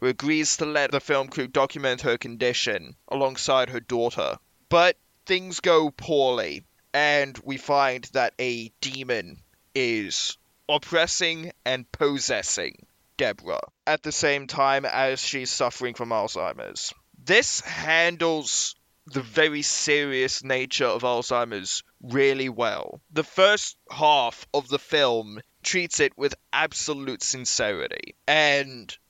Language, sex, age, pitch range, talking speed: English, male, 20-39, 130-165 Hz, 120 wpm